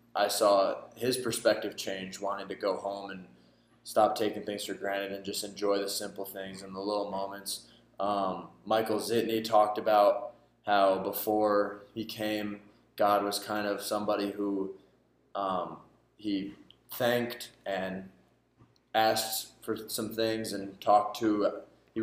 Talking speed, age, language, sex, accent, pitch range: 145 wpm, 20-39, English, male, American, 100-110 Hz